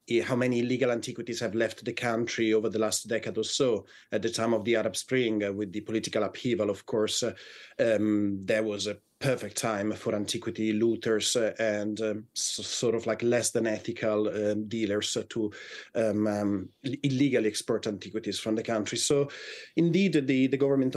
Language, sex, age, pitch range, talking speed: English, male, 30-49, 110-135 Hz, 170 wpm